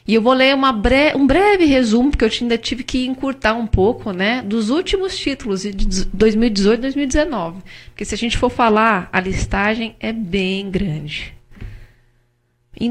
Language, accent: Portuguese, Brazilian